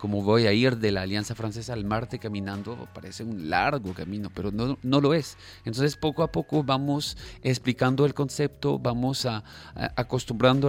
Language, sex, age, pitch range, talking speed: Spanish, male, 30-49, 105-130 Hz, 180 wpm